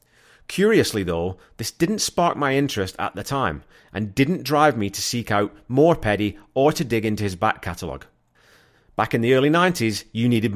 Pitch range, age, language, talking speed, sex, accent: 100-130 Hz, 30-49, English, 190 wpm, male, British